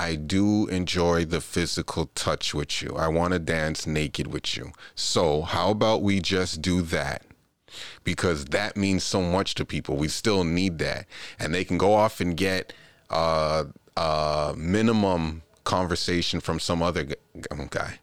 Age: 30-49